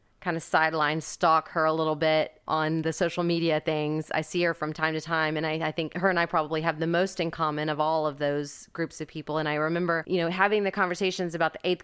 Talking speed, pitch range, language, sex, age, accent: 260 wpm, 155-180 Hz, English, female, 30-49, American